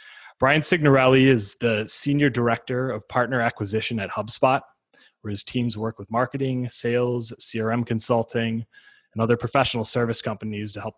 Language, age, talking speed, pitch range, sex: English, 20-39, 150 wpm, 110-125 Hz, male